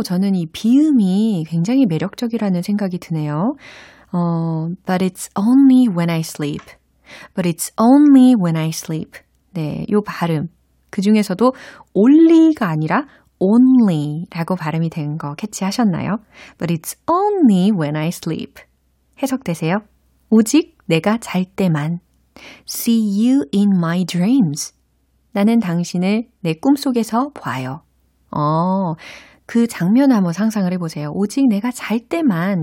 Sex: female